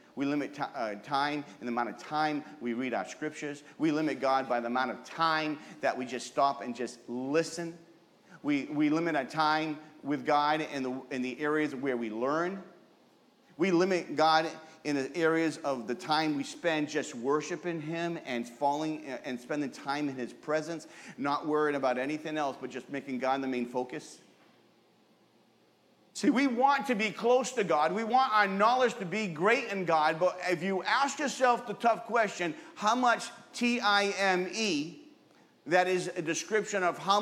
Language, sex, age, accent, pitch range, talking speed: English, male, 40-59, American, 145-200 Hz, 180 wpm